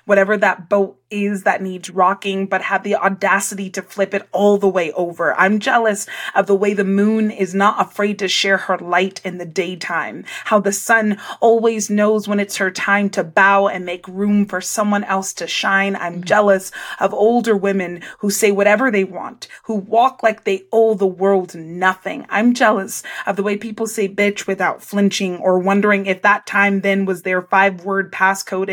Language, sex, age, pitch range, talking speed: English, female, 20-39, 190-210 Hz, 190 wpm